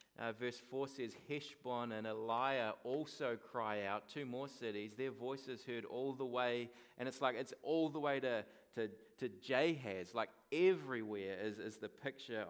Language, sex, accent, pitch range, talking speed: English, male, Australian, 115-135 Hz, 175 wpm